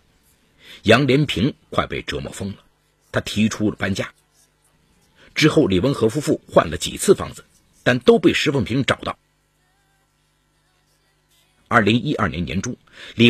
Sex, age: male, 50-69